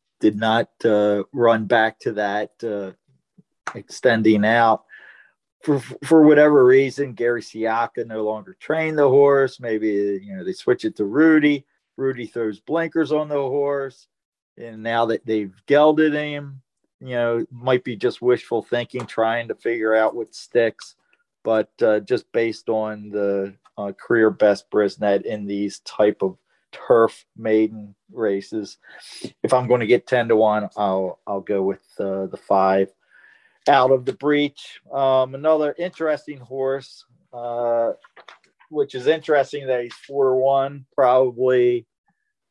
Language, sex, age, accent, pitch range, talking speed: English, male, 40-59, American, 110-140 Hz, 145 wpm